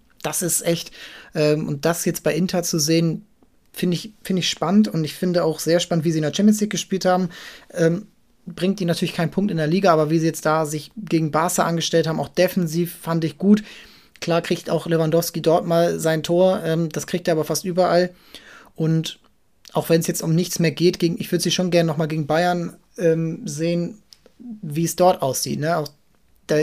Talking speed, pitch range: 220 wpm, 160-180 Hz